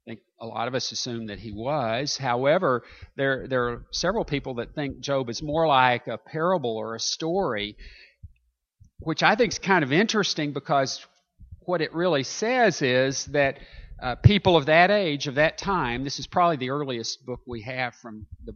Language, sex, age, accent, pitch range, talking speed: English, male, 50-69, American, 110-155 Hz, 185 wpm